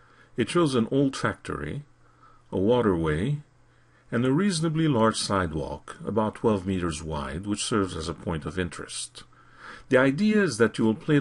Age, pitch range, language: 50-69, 80-120 Hz, English